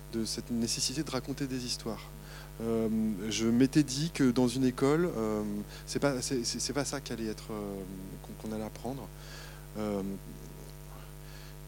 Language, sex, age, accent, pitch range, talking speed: French, male, 20-39, French, 115-150 Hz, 155 wpm